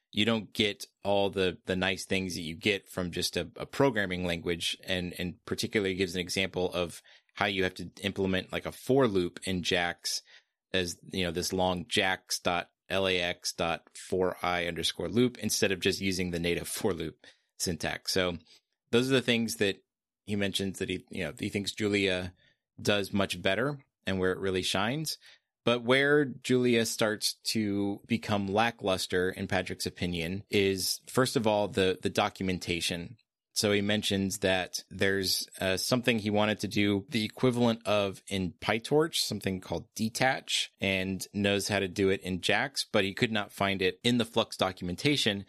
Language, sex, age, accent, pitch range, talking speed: English, male, 30-49, American, 90-105 Hz, 175 wpm